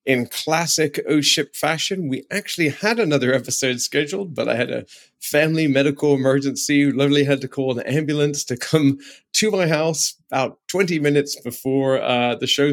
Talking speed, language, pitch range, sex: 170 wpm, English, 115-145 Hz, male